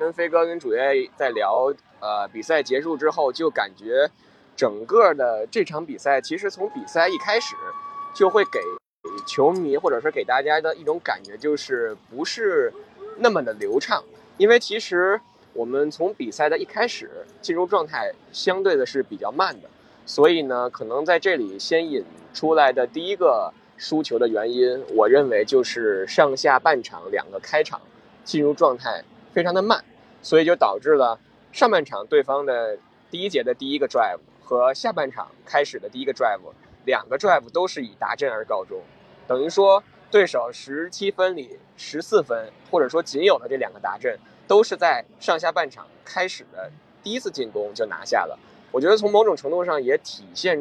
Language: Chinese